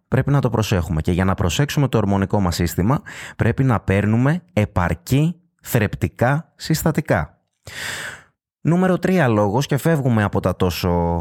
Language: Greek